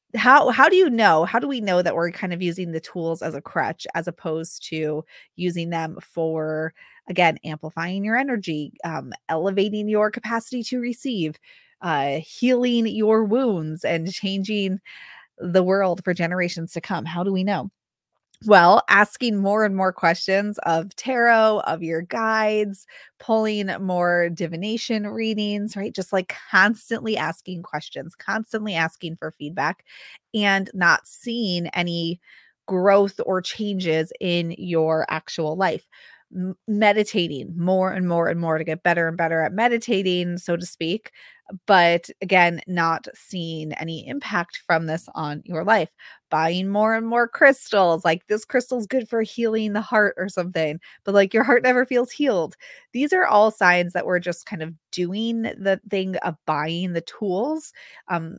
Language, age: English, 30-49